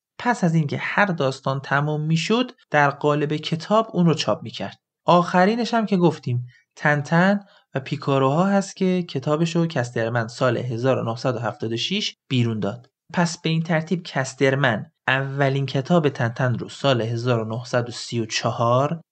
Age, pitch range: 30-49, 120-170 Hz